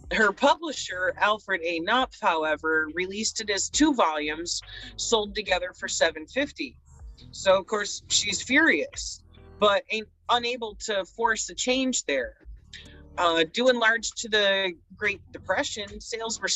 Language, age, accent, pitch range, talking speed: English, 40-59, American, 170-230 Hz, 135 wpm